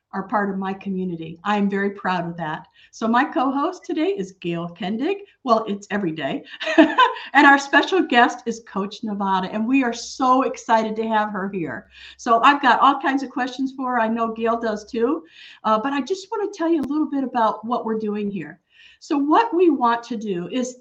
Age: 50-69